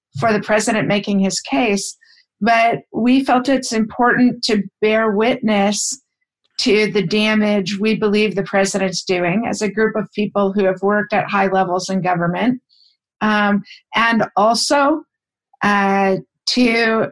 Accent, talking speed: American, 140 wpm